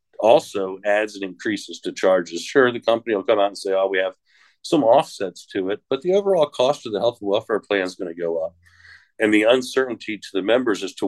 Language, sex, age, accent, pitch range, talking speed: English, male, 50-69, American, 95-120 Hz, 240 wpm